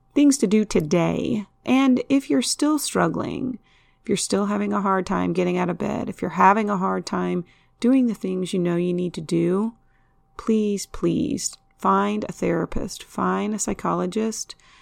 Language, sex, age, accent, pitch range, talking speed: English, female, 30-49, American, 175-210 Hz, 175 wpm